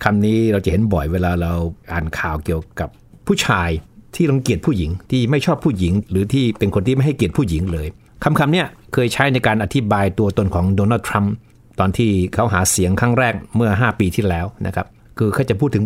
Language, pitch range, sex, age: Thai, 95-120 Hz, male, 60-79